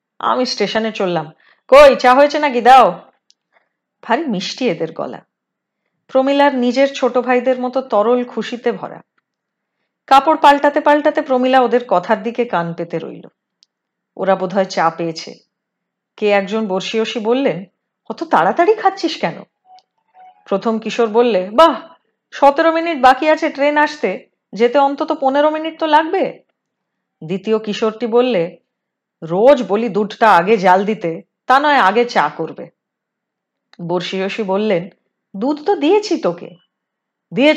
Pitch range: 190-280 Hz